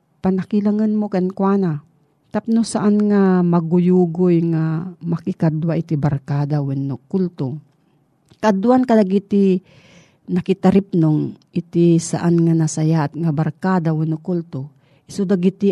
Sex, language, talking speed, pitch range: female, Filipino, 95 wpm, 155-190 Hz